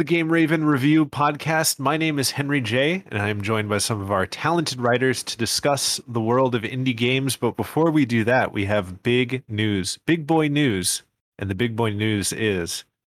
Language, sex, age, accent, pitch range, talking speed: English, male, 30-49, American, 100-130 Hz, 200 wpm